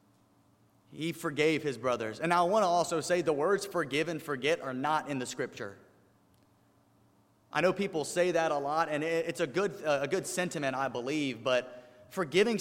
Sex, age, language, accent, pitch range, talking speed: male, 30-49, English, American, 130-175 Hz, 180 wpm